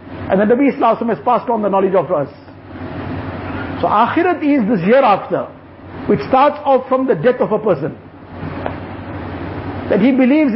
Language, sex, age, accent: English, male, 50-69, Indian